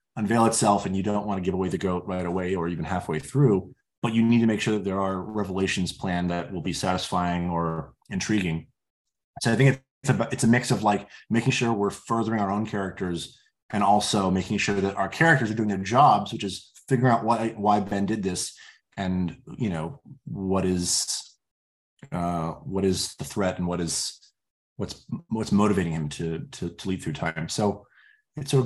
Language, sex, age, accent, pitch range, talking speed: English, male, 20-39, American, 90-115 Hz, 205 wpm